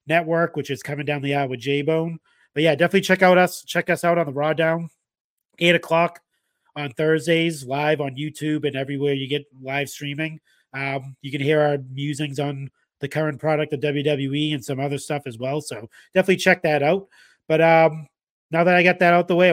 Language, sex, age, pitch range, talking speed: English, male, 30-49, 140-170 Hz, 210 wpm